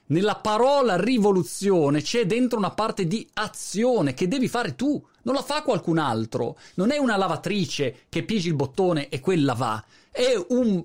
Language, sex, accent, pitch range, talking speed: Italian, male, native, 140-210 Hz, 170 wpm